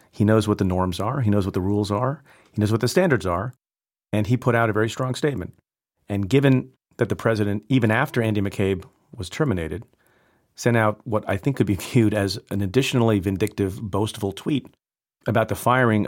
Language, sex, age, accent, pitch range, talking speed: English, male, 40-59, American, 95-125 Hz, 200 wpm